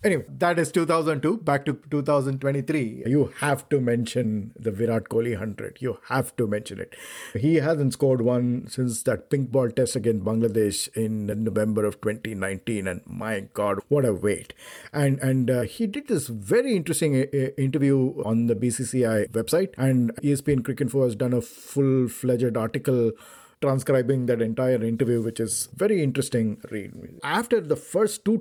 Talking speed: 165 wpm